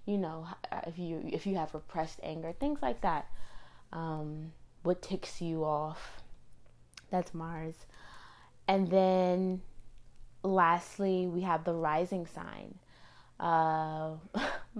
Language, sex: English, female